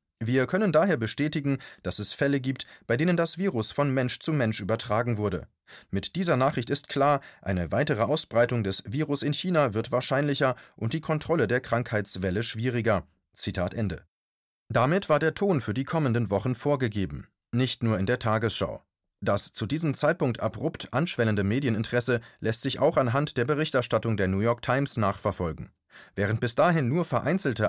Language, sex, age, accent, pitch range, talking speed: German, male, 30-49, German, 110-140 Hz, 165 wpm